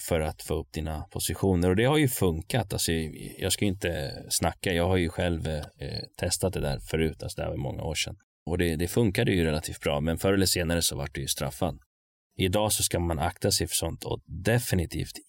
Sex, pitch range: male, 80-100 Hz